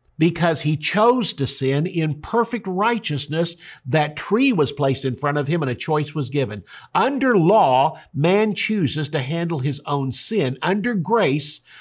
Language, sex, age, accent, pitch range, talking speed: English, male, 50-69, American, 135-170 Hz, 165 wpm